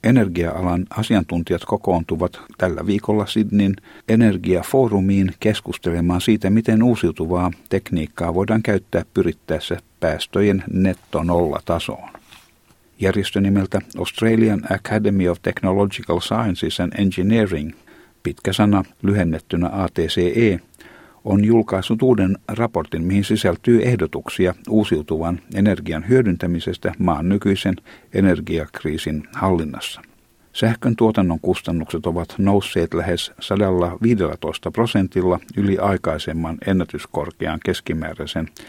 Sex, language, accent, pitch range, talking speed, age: male, Finnish, native, 85-105 Hz, 85 wpm, 60-79